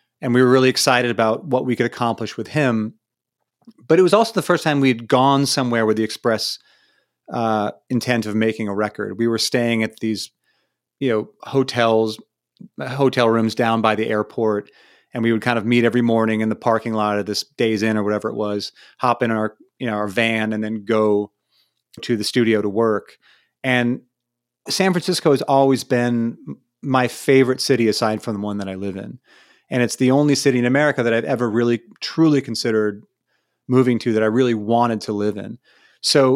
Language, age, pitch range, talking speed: English, 30-49, 110-135 Hz, 195 wpm